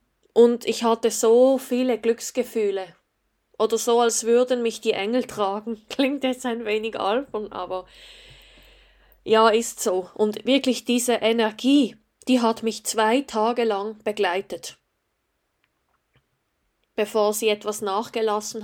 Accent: Swiss